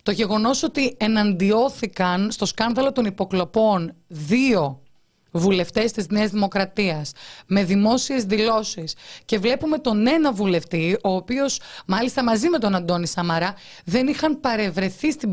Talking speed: 130 wpm